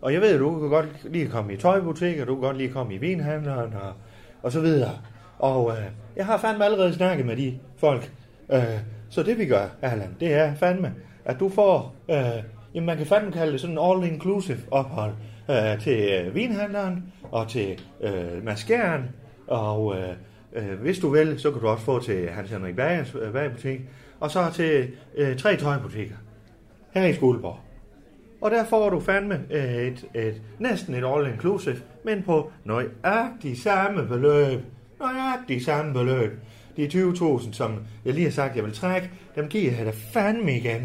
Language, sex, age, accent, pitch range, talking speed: Danish, male, 30-49, native, 115-175 Hz, 185 wpm